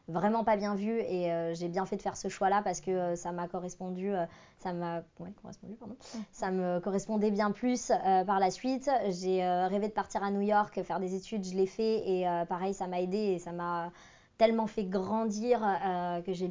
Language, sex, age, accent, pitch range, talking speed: French, male, 20-39, French, 185-215 Hz, 235 wpm